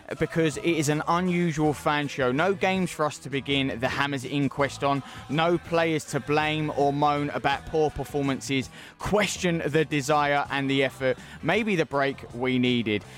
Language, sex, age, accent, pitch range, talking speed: English, male, 20-39, British, 130-160 Hz, 170 wpm